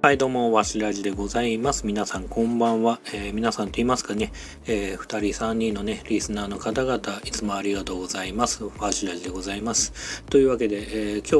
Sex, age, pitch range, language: male, 40-59, 100-140 Hz, Japanese